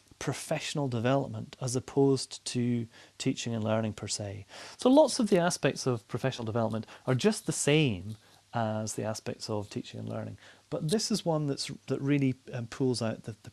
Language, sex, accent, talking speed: English, male, British, 175 wpm